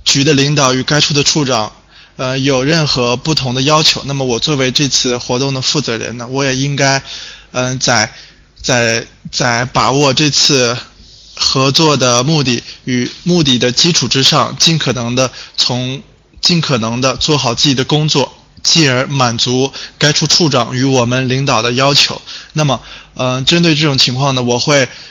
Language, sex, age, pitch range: Chinese, male, 20-39, 125-145 Hz